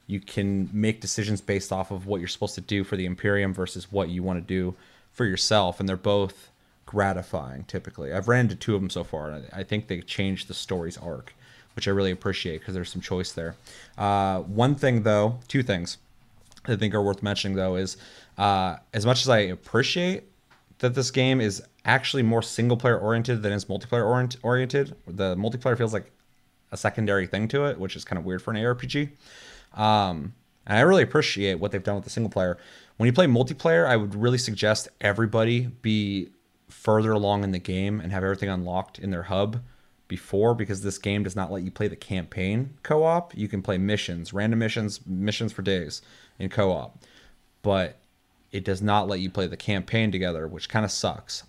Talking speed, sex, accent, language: 205 wpm, male, American, English